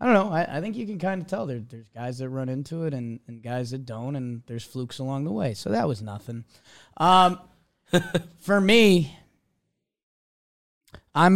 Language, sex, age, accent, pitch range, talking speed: English, male, 20-39, American, 130-175 Hz, 190 wpm